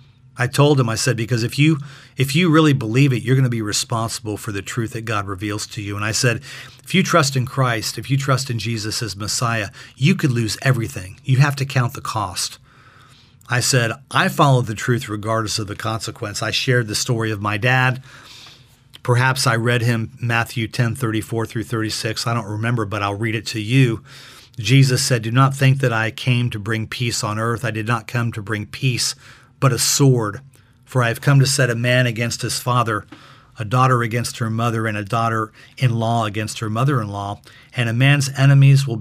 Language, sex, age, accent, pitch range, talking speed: English, male, 40-59, American, 110-130 Hz, 215 wpm